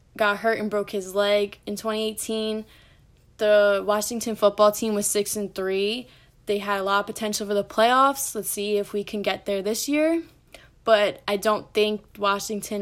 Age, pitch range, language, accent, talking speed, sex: 10-29, 205-225 Hz, English, American, 185 wpm, female